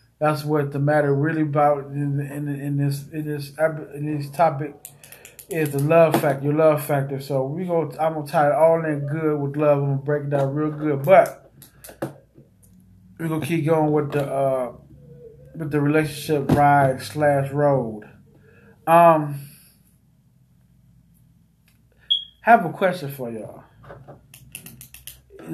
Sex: male